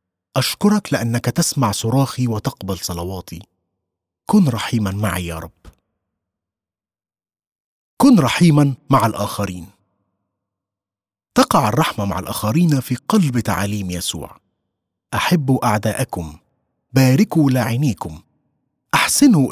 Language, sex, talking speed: Arabic, male, 85 wpm